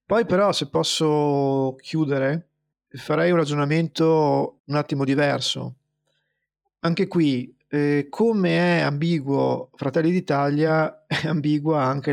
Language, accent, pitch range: Italian, native, 140-175 Hz